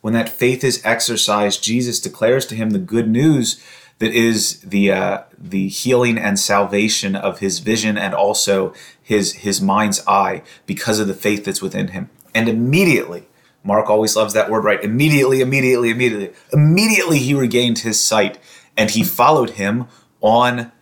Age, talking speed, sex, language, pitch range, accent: 30-49, 165 wpm, male, English, 105-125 Hz, American